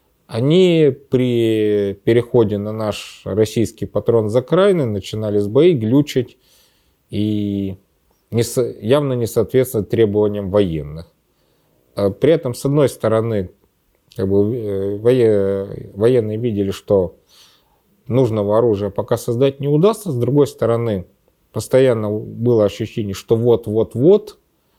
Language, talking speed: Russian, 105 wpm